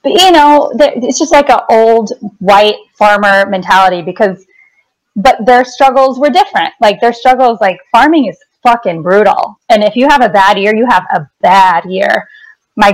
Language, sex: English, female